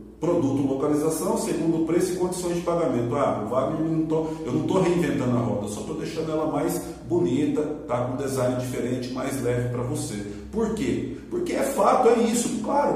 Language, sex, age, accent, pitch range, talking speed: Portuguese, male, 40-59, Brazilian, 150-190 Hz, 180 wpm